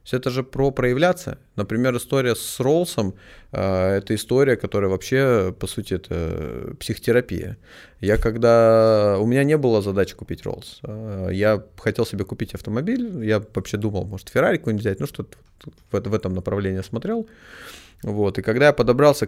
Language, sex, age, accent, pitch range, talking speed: Russian, male, 30-49, native, 95-120 Hz, 160 wpm